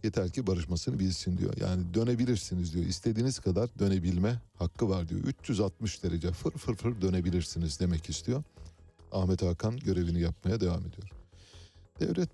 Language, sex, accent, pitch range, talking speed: Turkish, male, native, 90-120 Hz, 140 wpm